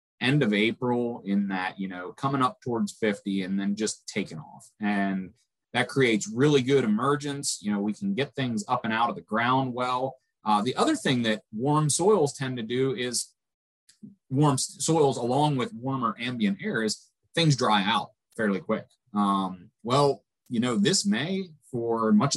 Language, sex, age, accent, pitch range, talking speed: English, male, 30-49, American, 105-150 Hz, 180 wpm